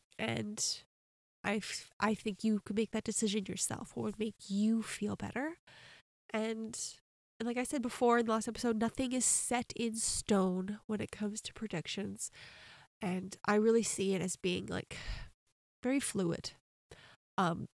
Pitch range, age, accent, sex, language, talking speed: 195-230 Hz, 20-39, American, female, English, 160 wpm